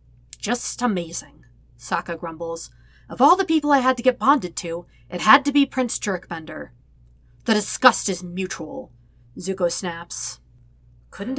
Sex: female